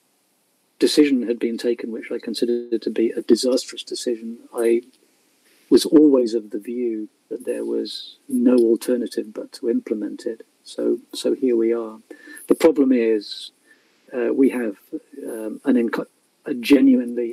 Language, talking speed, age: Arabic, 150 wpm, 50-69